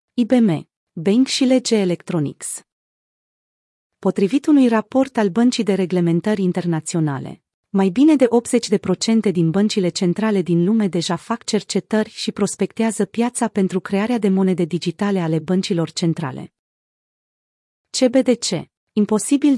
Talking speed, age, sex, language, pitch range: 115 wpm, 30-49, female, Romanian, 180-230 Hz